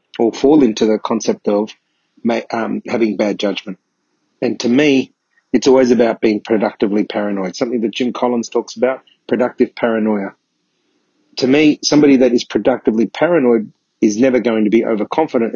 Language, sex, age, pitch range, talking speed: English, male, 40-59, 110-130 Hz, 155 wpm